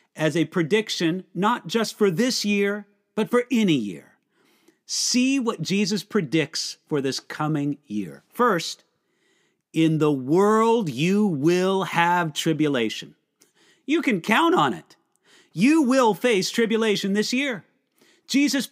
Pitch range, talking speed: 175-235 Hz, 130 wpm